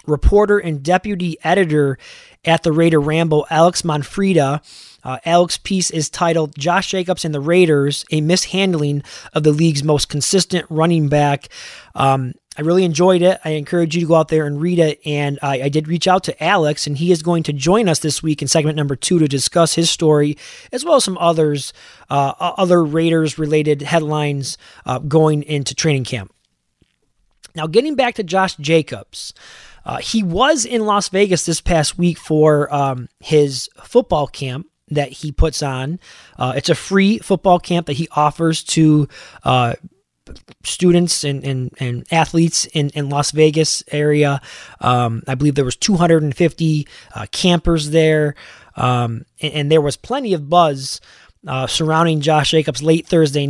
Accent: American